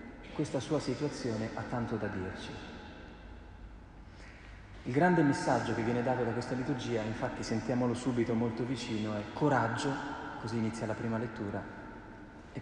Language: Italian